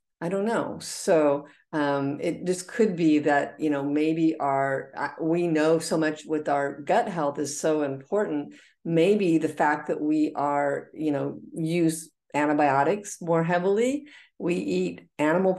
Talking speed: 155 wpm